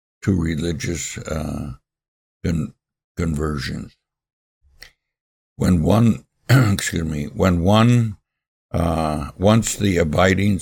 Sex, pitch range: male, 75-90 Hz